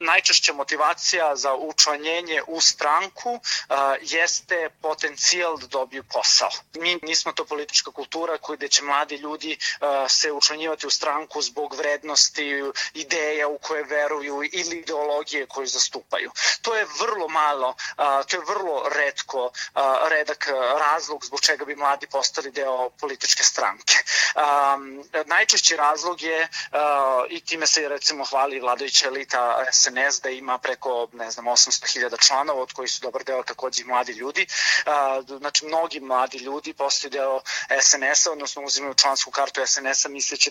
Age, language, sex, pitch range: 30-49, Croatian, male, 135-155 Hz